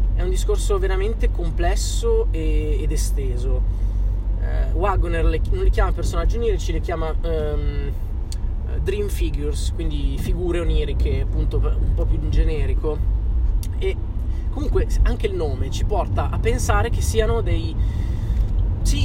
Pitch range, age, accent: 80-95 Hz, 20-39, native